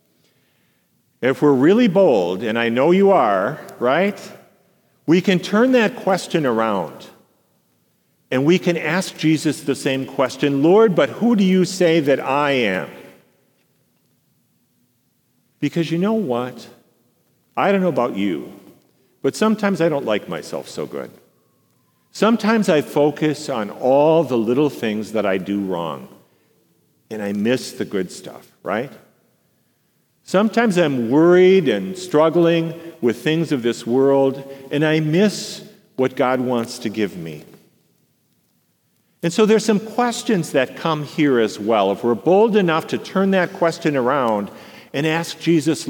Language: English